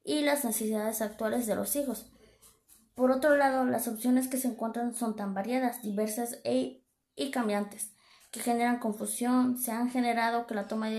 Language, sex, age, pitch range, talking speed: Spanish, female, 20-39, 215-250 Hz, 170 wpm